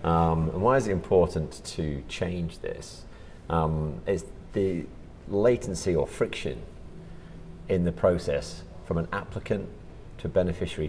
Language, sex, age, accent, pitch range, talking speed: English, male, 30-49, British, 75-90 Hz, 130 wpm